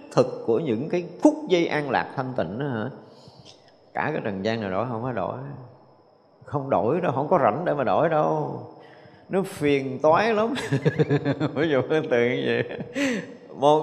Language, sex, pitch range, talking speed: Vietnamese, male, 115-165 Hz, 180 wpm